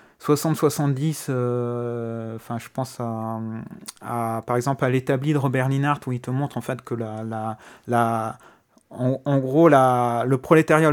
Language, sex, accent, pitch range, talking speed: French, male, French, 120-145 Hz, 165 wpm